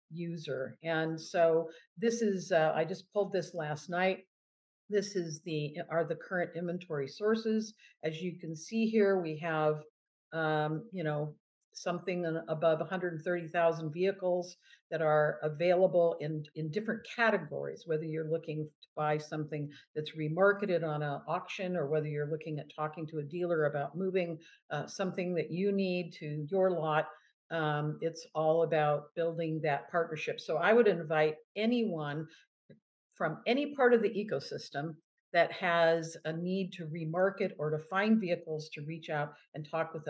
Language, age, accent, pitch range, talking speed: English, 50-69, American, 155-185 Hz, 155 wpm